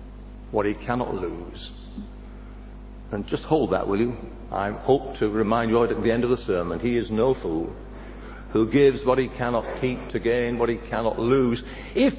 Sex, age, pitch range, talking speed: male, 60-79, 120-180 Hz, 190 wpm